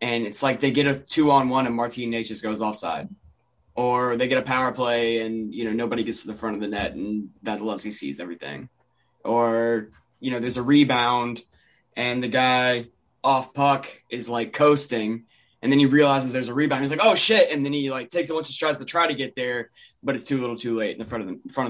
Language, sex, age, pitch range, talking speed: English, male, 20-39, 115-140 Hz, 240 wpm